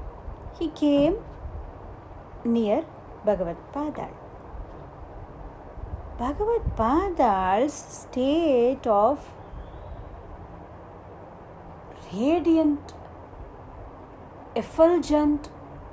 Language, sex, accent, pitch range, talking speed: Tamil, female, native, 210-325 Hz, 40 wpm